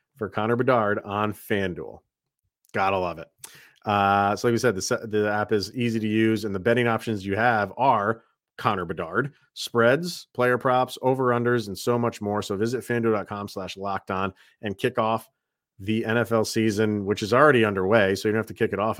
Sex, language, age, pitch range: male, English, 40-59, 100-125 Hz